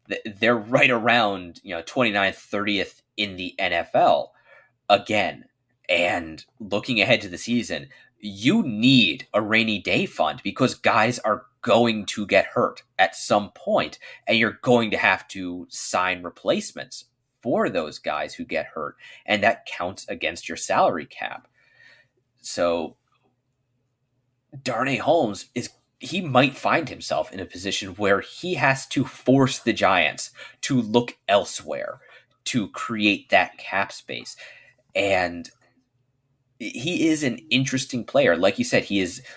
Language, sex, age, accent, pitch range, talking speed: English, male, 30-49, American, 100-130 Hz, 140 wpm